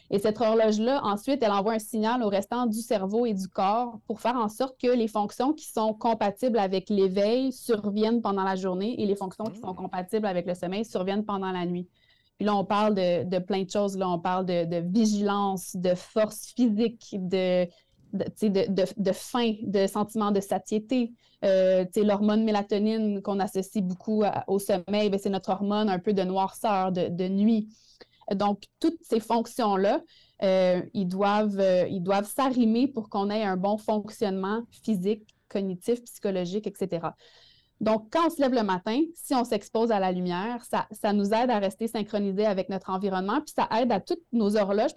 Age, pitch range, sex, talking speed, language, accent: 30-49, 195-225 Hz, female, 190 wpm, French, Canadian